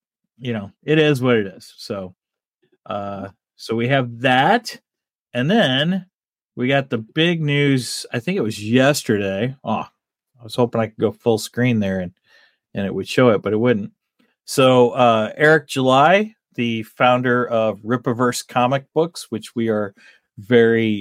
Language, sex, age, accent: English, male, 30-49, American